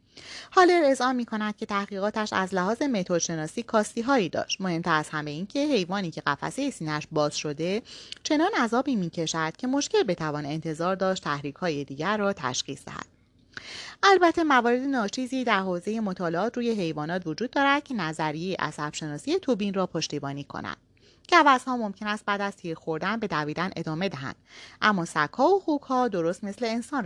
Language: Persian